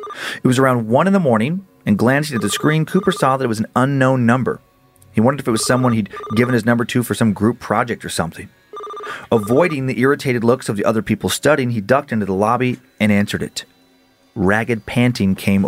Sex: male